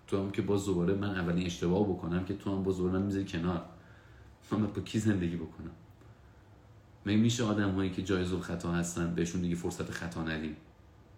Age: 40-59